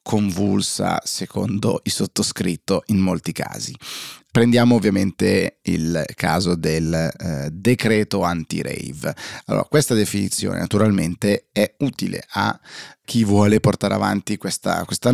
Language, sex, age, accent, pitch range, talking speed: Italian, male, 30-49, native, 95-115 Hz, 105 wpm